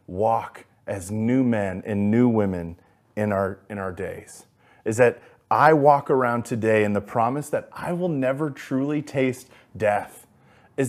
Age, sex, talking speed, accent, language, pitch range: 30-49, male, 160 wpm, American, English, 110-135 Hz